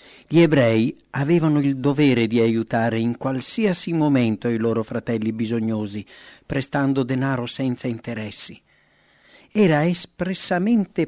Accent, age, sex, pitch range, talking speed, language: Italian, 50-69, male, 120-160 Hz, 110 wpm, English